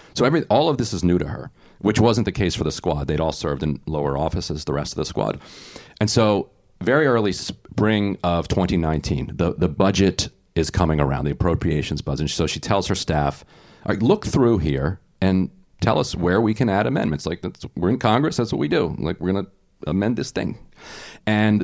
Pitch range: 80-110 Hz